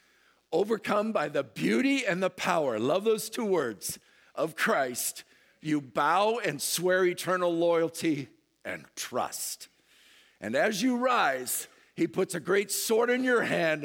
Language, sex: English, male